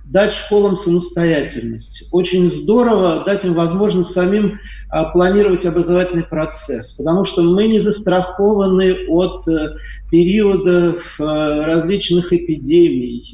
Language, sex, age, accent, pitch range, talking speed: Russian, male, 40-59, native, 165-200 Hz, 95 wpm